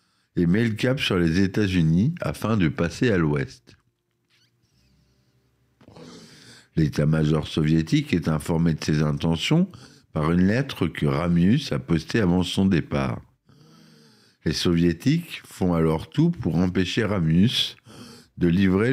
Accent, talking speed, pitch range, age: French, 125 wpm, 80-110 Hz, 50-69